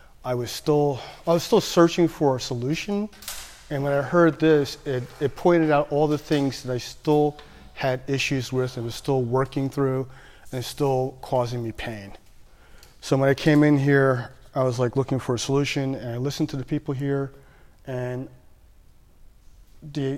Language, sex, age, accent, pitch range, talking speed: English, male, 30-49, American, 120-145 Hz, 180 wpm